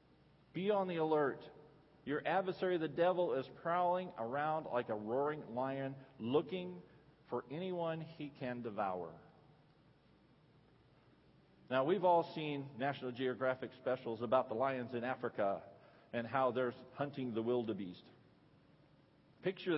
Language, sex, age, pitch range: English, male, 50-69, 130-160 Hz